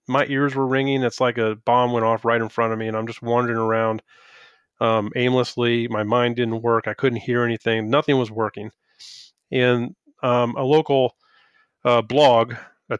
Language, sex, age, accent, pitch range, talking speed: English, male, 30-49, American, 110-130 Hz, 185 wpm